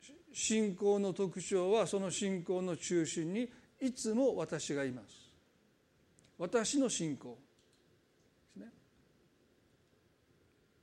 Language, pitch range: Japanese, 170-225 Hz